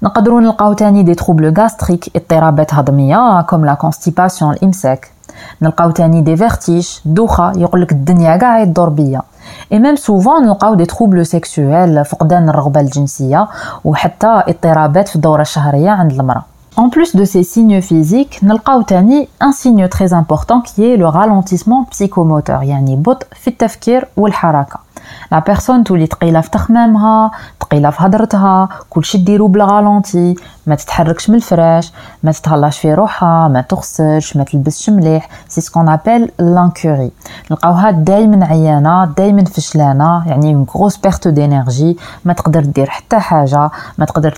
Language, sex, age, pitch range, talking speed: French, female, 20-39, 155-200 Hz, 85 wpm